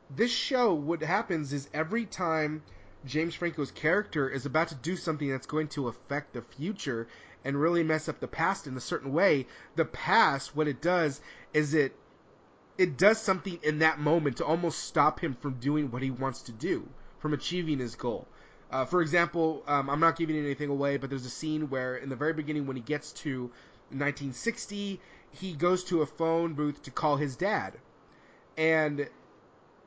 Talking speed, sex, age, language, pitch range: 185 wpm, male, 30-49, English, 140-170 Hz